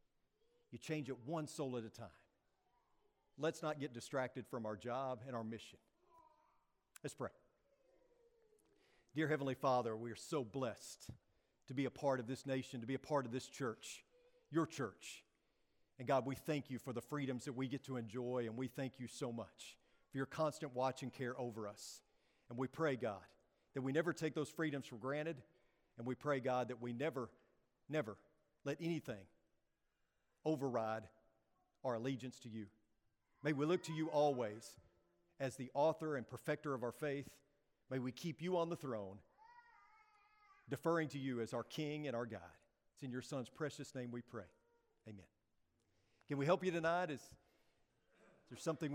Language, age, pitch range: English, 50-69, 120-155 Hz